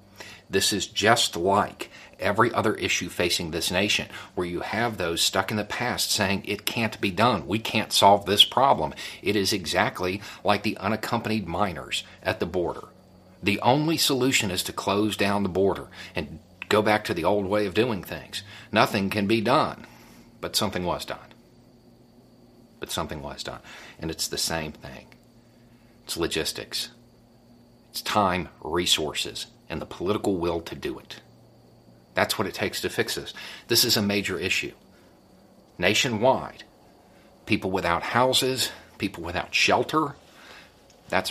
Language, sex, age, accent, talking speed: English, male, 50-69, American, 155 wpm